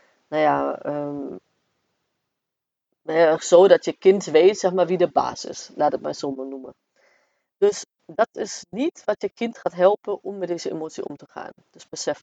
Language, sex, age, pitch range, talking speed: Dutch, female, 30-49, 150-180 Hz, 165 wpm